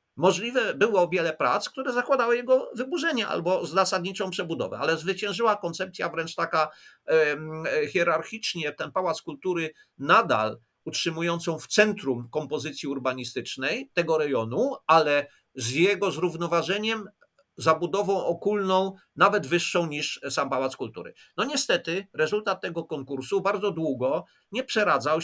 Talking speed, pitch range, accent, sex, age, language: 120 wpm, 150-195 Hz, native, male, 50-69, Polish